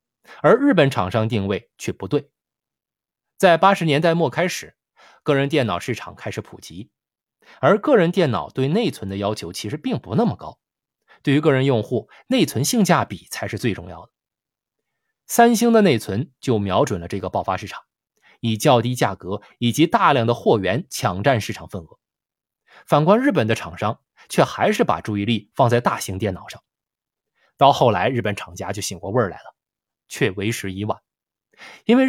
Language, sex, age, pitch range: Chinese, male, 20-39, 100-160 Hz